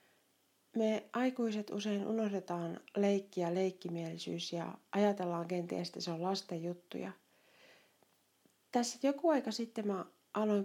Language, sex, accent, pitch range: Finnish, female, native, 180-220 Hz